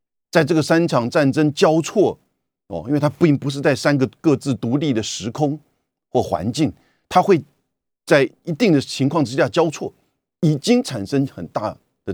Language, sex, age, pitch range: Chinese, male, 50-69, 125-170 Hz